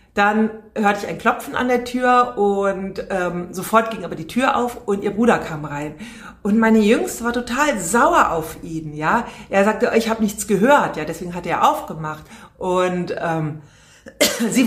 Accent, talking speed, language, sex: German, 180 wpm, German, female